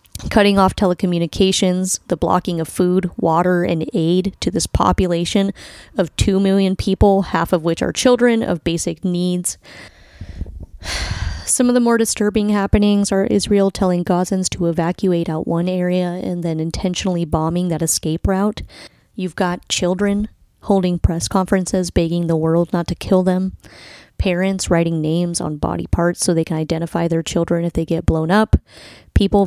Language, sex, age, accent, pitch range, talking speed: English, female, 30-49, American, 165-190 Hz, 160 wpm